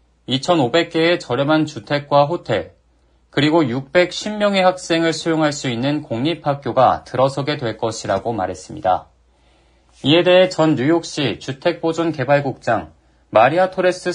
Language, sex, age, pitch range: Korean, male, 40-59, 115-175 Hz